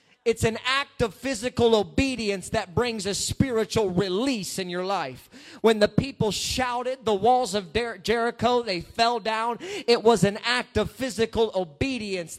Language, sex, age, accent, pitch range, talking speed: English, male, 30-49, American, 200-250 Hz, 155 wpm